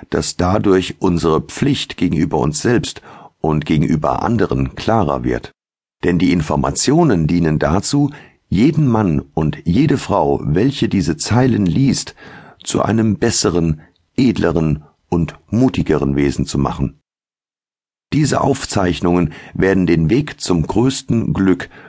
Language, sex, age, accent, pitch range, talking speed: German, male, 50-69, German, 75-110 Hz, 120 wpm